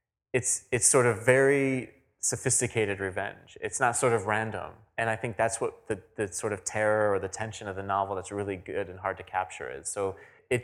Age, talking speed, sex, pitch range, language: 20-39, 215 wpm, male, 105-120 Hz, English